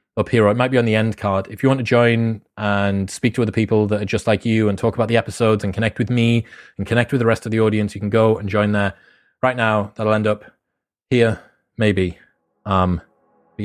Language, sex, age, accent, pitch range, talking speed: English, male, 30-49, British, 95-120 Hz, 250 wpm